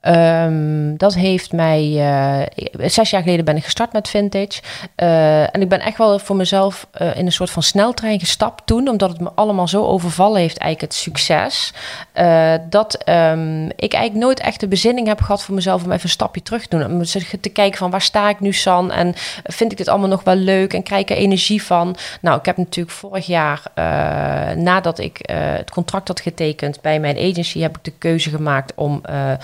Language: Dutch